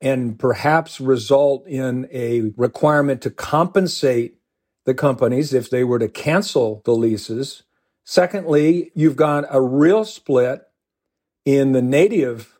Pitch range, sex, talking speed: 115-150 Hz, male, 125 wpm